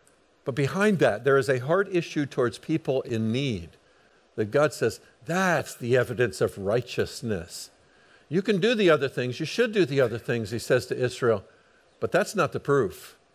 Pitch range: 125-185 Hz